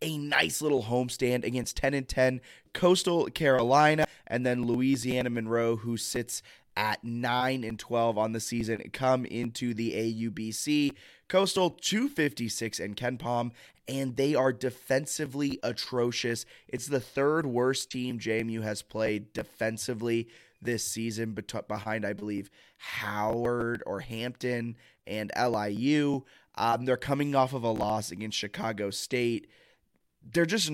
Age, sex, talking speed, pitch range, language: 20-39, male, 135 wpm, 110-130 Hz, English